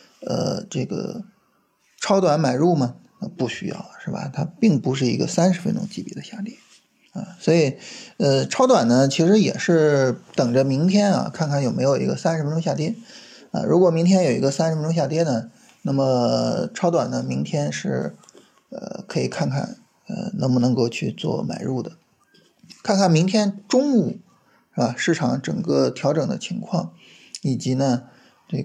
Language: Chinese